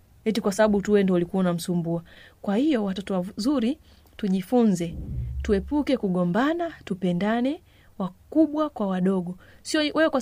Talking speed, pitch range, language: 125 wpm, 185-270 Hz, Swahili